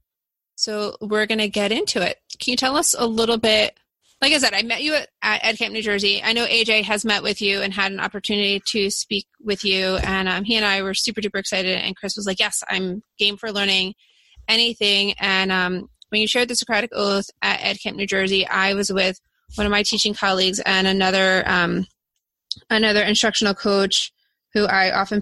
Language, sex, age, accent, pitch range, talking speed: English, female, 20-39, American, 190-215 Hz, 205 wpm